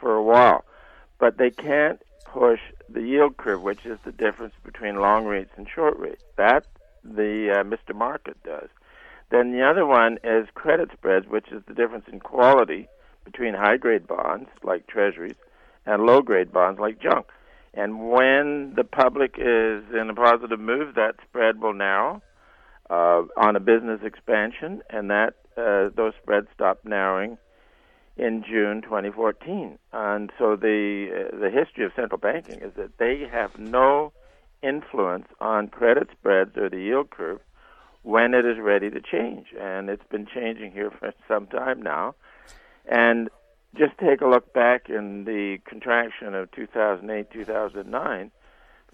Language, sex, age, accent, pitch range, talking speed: English, male, 60-79, American, 105-125 Hz, 155 wpm